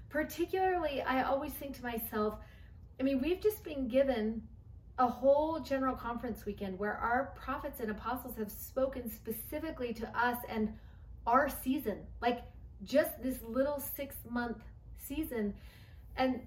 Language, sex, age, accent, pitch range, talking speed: English, female, 30-49, American, 210-255 Hz, 140 wpm